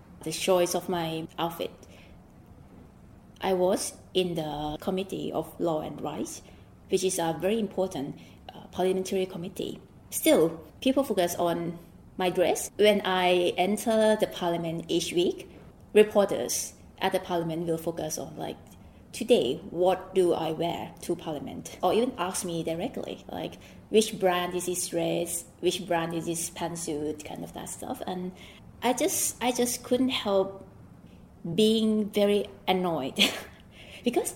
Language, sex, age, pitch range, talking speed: English, female, 20-39, 165-210 Hz, 140 wpm